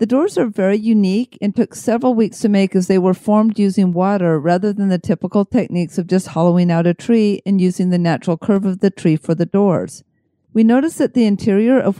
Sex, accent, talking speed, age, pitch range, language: female, American, 225 wpm, 50-69, 180-220 Hz, English